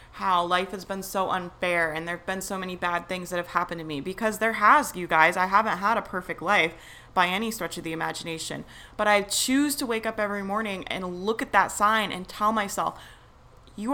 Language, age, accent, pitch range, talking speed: English, 30-49, American, 180-215 Hz, 225 wpm